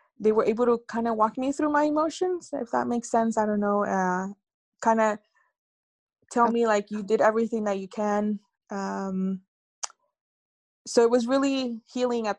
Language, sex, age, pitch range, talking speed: English, female, 20-39, 200-230 Hz, 180 wpm